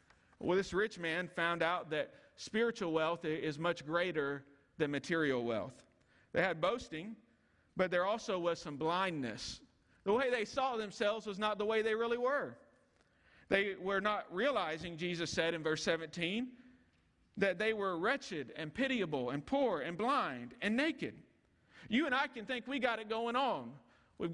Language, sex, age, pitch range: English, male, 50-69, 180-235 Hz